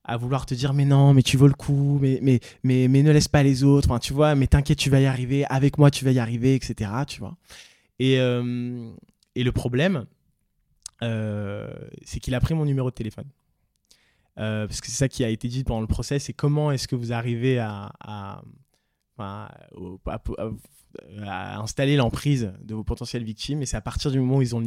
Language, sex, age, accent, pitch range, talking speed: French, male, 20-39, French, 115-140 Hz, 230 wpm